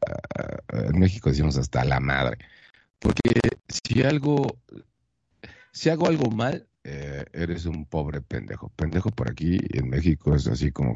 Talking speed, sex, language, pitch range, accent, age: 140 wpm, male, Spanish, 70-110 Hz, Mexican, 50-69